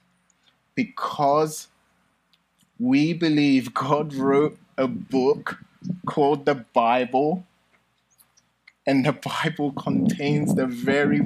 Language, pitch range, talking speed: English, 125-190 Hz, 85 wpm